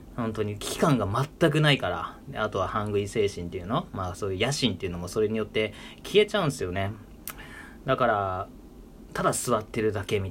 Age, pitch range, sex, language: 30-49, 100-125 Hz, male, Japanese